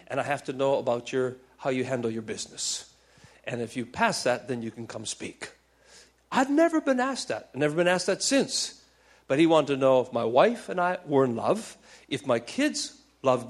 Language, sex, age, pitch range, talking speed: English, male, 50-69, 120-175 Hz, 220 wpm